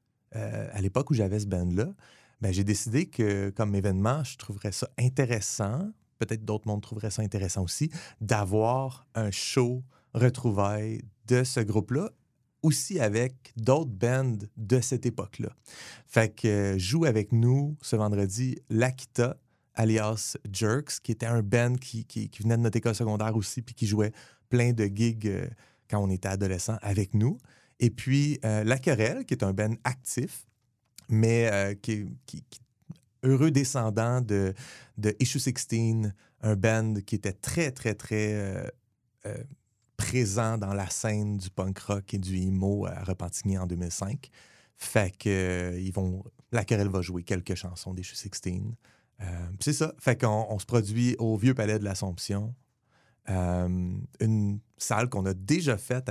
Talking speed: 160 wpm